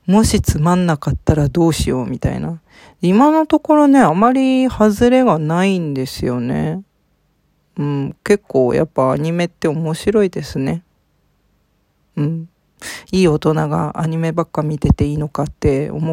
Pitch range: 150-185 Hz